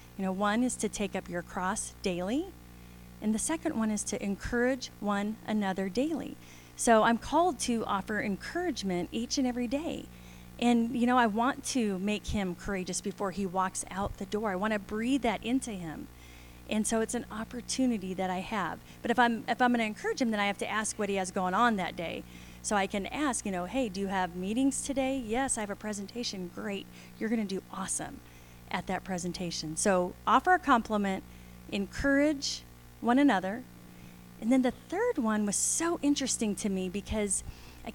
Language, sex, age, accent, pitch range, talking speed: English, female, 30-49, American, 185-240 Hz, 200 wpm